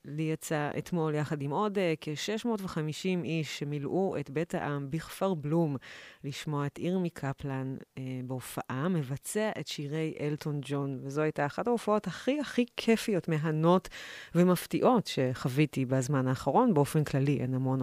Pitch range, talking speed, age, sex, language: 140-160 Hz, 140 wpm, 30-49, female, Hebrew